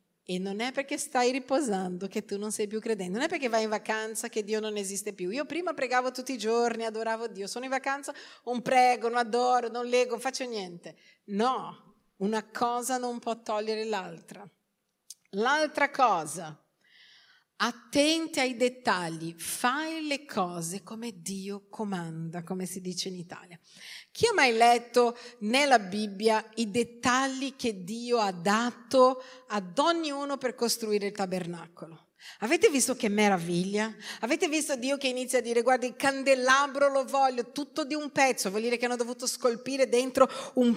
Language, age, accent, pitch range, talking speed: Italian, 40-59, native, 215-275 Hz, 165 wpm